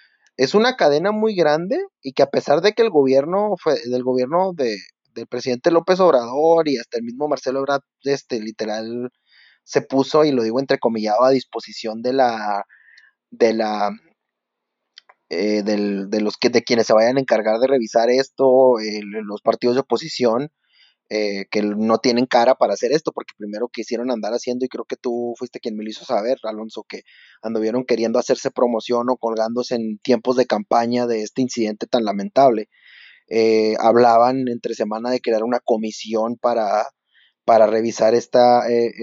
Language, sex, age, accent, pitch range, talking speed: Spanish, male, 30-49, Mexican, 110-140 Hz, 175 wpm